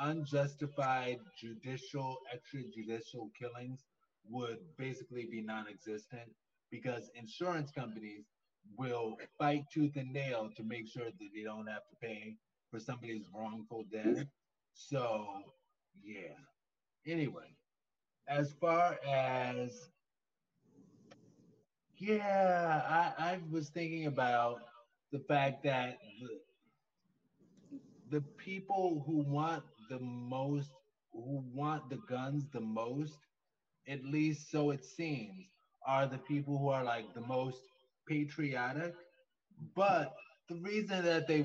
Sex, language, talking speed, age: male, English, 110 wpm, 30-49